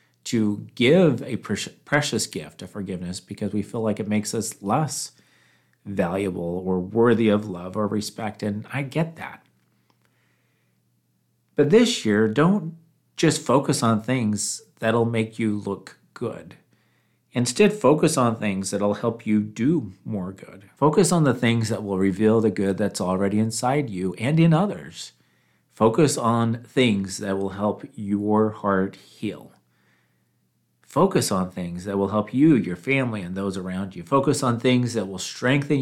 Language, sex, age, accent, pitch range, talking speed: English, male, 40-59, American, 95-125 Hz, 155 wpm